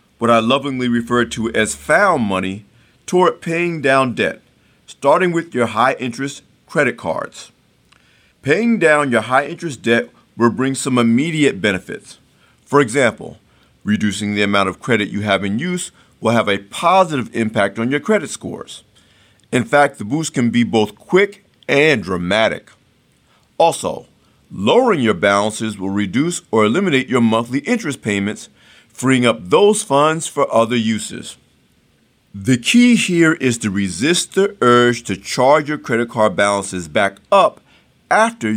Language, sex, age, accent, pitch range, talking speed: English, male, 50-69, American, 110-155 Hz, 145 wpm